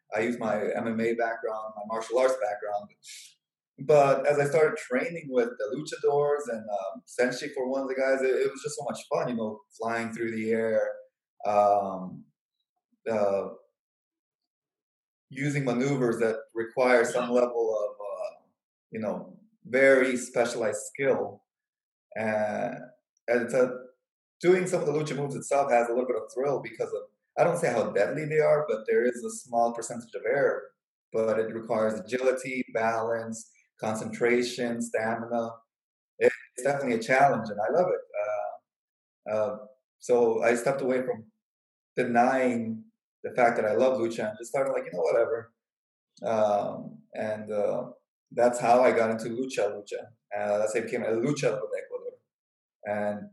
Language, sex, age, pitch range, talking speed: English, male, 20-39, 115-180 Hz, 160 wpm